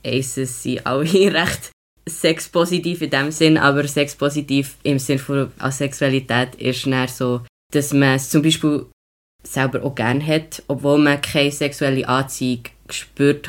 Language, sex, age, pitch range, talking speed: German, female, 20-39, 125-145 Hz, 140 wpm